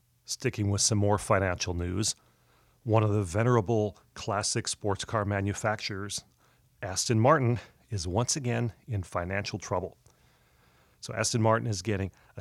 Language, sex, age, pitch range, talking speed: English, male, 40-59, 95-115 Hz, 135 wpm